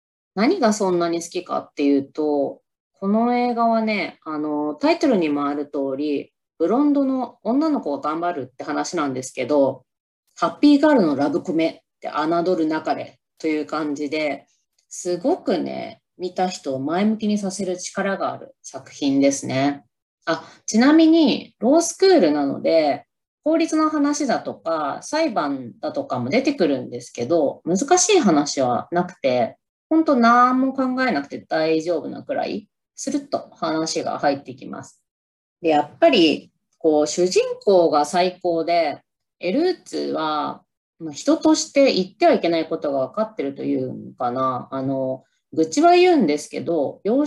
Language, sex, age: Japanese, female, 20-39